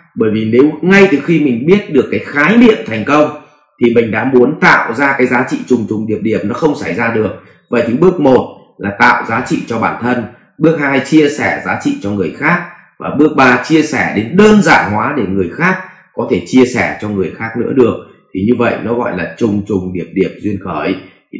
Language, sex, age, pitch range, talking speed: English, male, 20-39, 115-155 Hz, 240 wpm